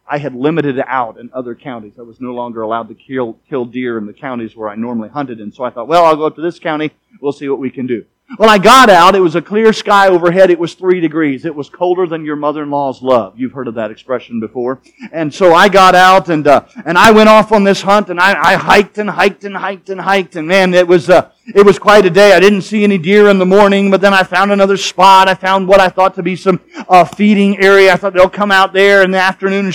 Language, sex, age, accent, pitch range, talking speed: English, male, 40-59, American, 155-205 Hz, 280 wpm